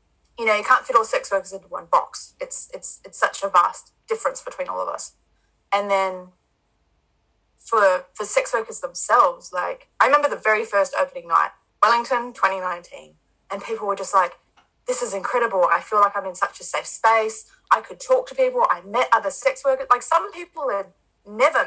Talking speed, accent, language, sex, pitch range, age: 195 wpm, Australian, English, female, 195-310 Hz, 20-39